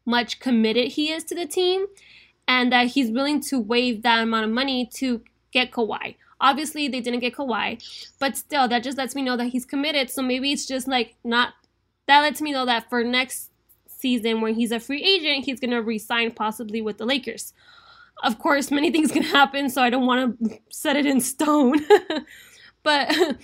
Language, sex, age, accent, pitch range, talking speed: English, female, 10-29, American, 235-280 Hz, 195 wpm